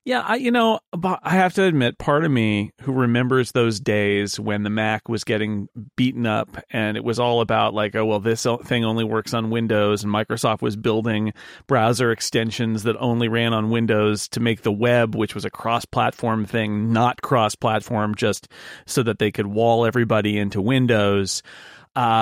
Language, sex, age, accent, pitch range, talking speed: English, male, 40-59, American, 110-140 Hz, 185 wpm